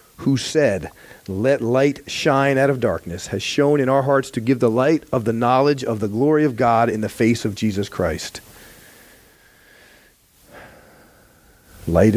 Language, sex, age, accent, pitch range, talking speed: English, male, 40-59, American, 110-140 Hz, 160 wpm